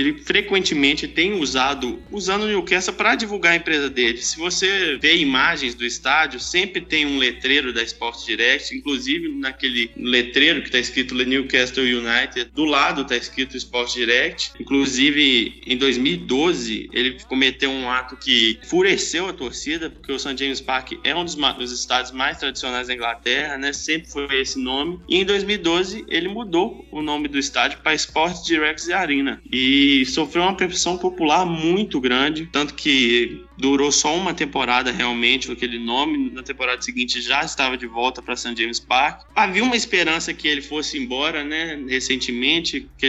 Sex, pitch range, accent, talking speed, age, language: male, 125-170 Hz, Brazilian, 165 wpm, 20-39, Portuguese